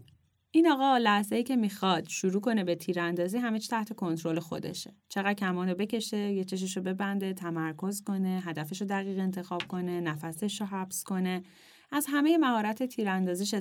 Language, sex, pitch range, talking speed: Persian, female, 185-240 Hz, 145 wpm